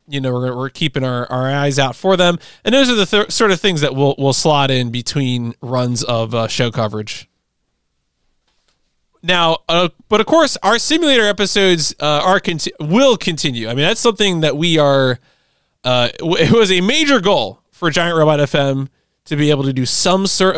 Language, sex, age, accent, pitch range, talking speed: English, male, 20-39, American, 130-170 Hz, 200 wpm